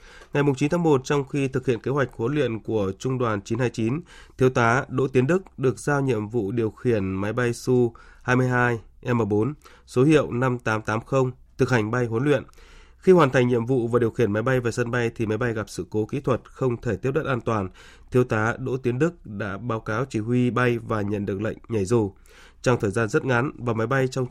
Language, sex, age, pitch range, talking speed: Vietnamese, male, 20-39, 110-130 Hz, 225 wpm